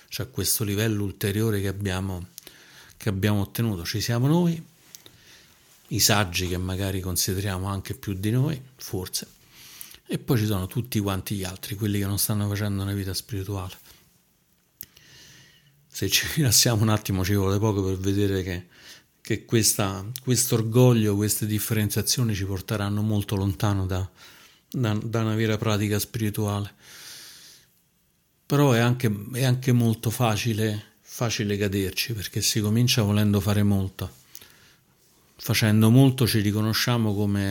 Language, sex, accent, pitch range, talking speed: Italian, male, native, 100-115 Hz, 135 wpm